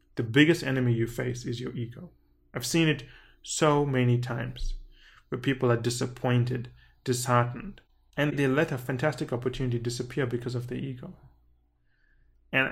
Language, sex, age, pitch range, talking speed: English, male, 20-39, 125-155 Hz, 145 wpm